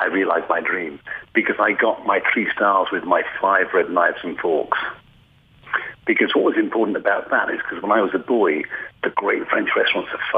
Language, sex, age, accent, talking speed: English, male, 50-69, British, 200 wpm